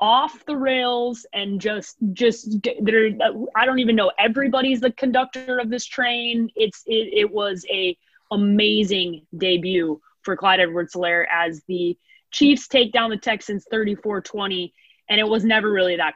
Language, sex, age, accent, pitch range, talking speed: English, female, 20-39, American, 180-230 Hz, 155 wpm